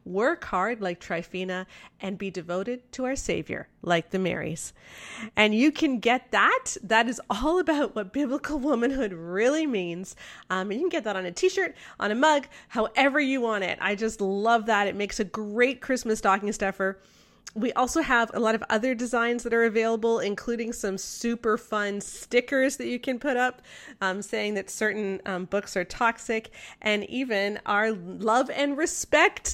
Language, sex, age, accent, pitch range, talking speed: English, female, 30-49, American, 200-265 Hz, 180 wpm